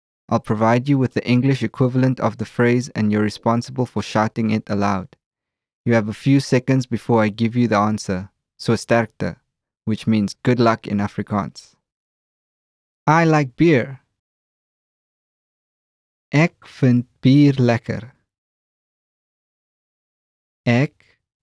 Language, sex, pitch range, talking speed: English, male, 105-130 Hz, 125 wpm